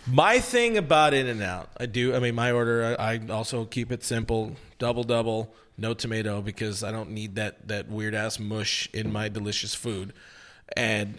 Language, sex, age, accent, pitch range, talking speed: English, male, 30-49, American, 115-190 Hz, 165 wpm